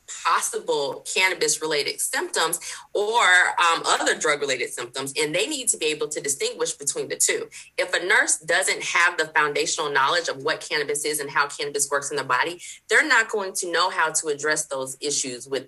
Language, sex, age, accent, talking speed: English, female, 30-49, American, 190 wpm